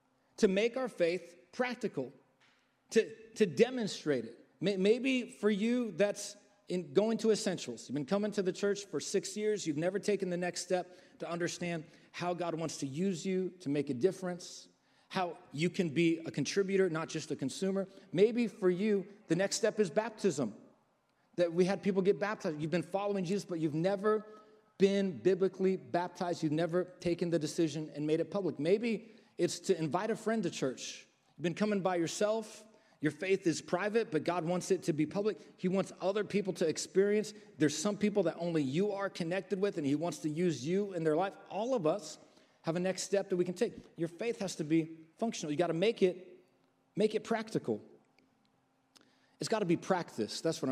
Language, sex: English, male